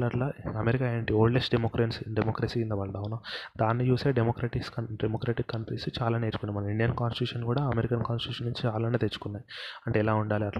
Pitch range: 105-120 Hz